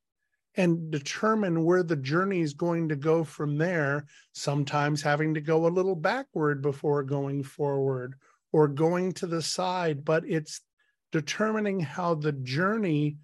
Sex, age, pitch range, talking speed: male, 50-69, 150-180 Hz, 145 wpm